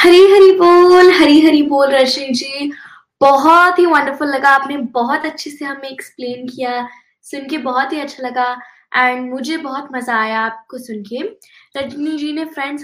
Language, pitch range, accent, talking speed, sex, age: Hindi, 250-320 Hz, native, 175 wpm, female, 20-39